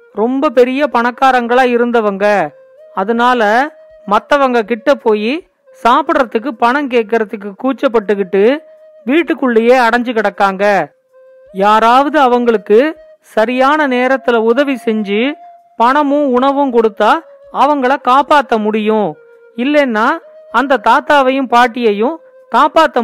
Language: Tamil